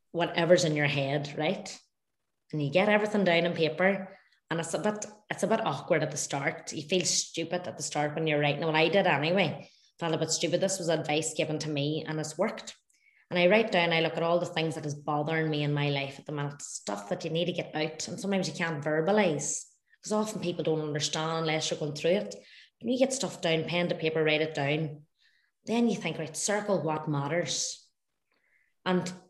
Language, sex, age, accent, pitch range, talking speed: English, female, 20-39, Irish, 155-180 Hz, 225 wpm